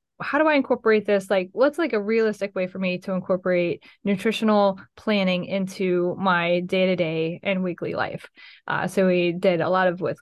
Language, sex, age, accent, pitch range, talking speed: English, female, 10-29, American, 185-220 Hz, 195 wpm